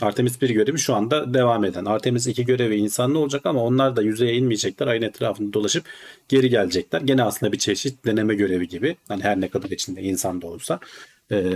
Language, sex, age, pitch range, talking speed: Turkish, male, 40-59, 100-135 Hz, 195 wpm